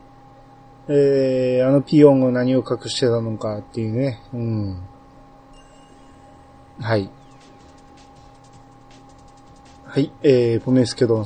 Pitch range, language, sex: 115-135 Hz, Japanese, male